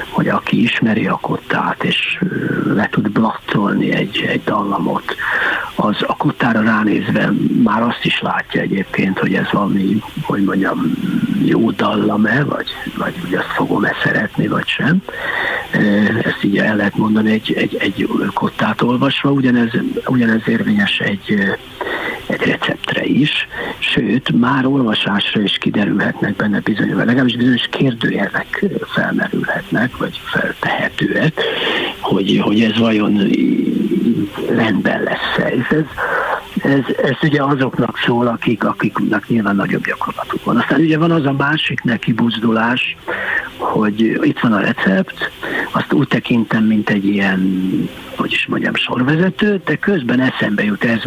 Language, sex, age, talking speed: Hungarian, male, 60-79, 130 wpm